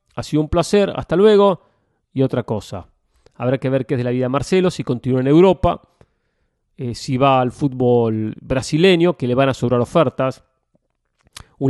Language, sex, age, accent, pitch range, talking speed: English, male, 40-59, Argentinian, 115-145 Hz, 185 wpm